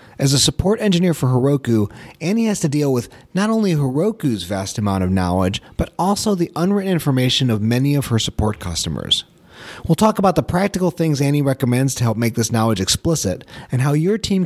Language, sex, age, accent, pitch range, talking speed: English, male, 30-49, American, 120-175 Hz, 195 wpm